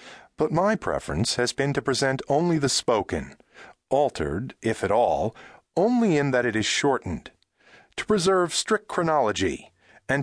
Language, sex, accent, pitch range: English, male, American, 110-170 Hz